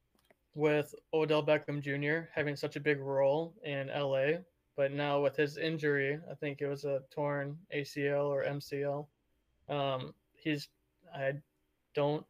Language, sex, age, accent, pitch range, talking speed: English, male, 20-39, American, 140-150 Hz, 135 wpm